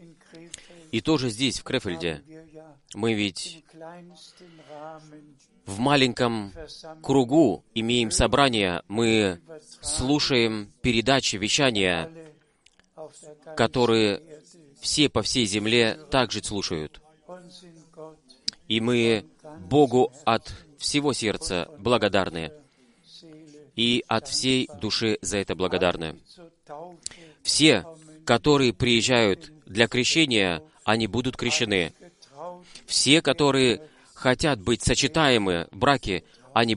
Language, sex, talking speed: Russian, male, 85 wpm